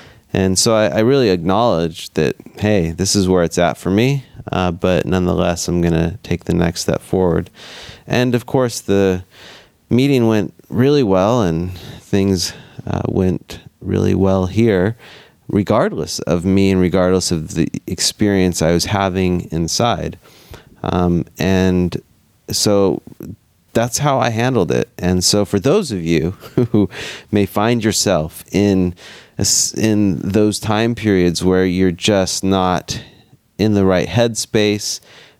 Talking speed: 140 wpm